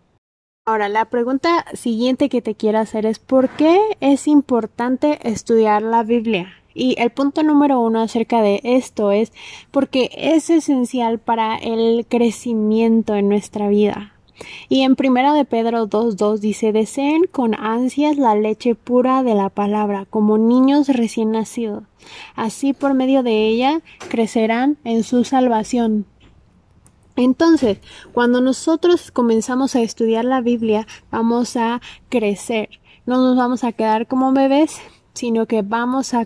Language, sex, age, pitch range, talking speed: Spanish, female, 20-39, 220-265 Hz, 140 wpm